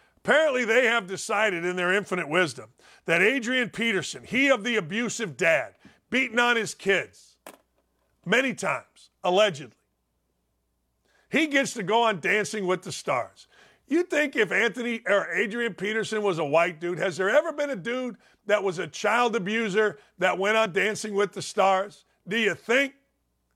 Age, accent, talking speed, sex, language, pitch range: 50-69, American, 165 wpm, male, English, 195-265 Hz